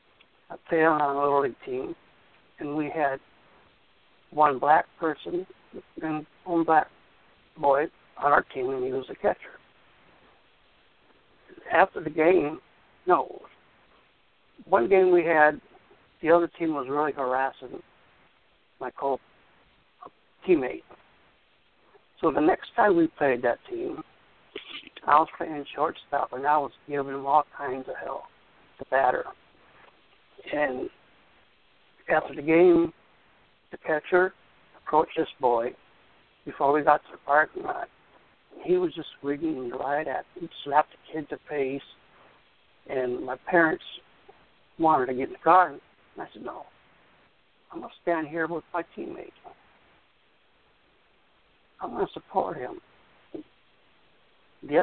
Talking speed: 130 wpm